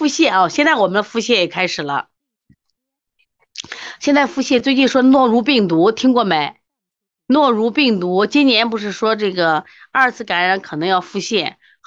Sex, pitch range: female, 180-265 Hz